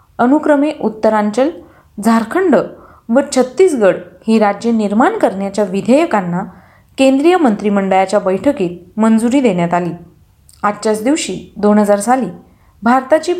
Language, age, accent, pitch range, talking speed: Marathi, 30-49, native, 200-265 Hz, 95 wpm